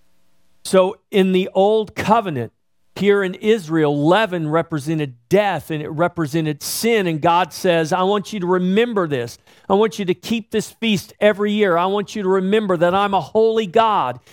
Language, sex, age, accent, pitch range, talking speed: English, male, 50-69, American, 155-205 Hz, 180 wpm